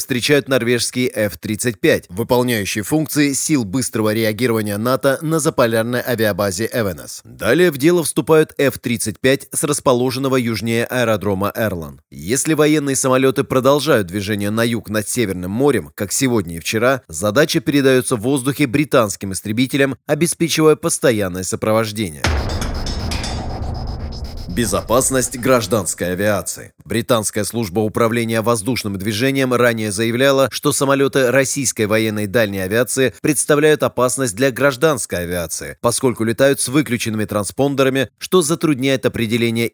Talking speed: 115 wpm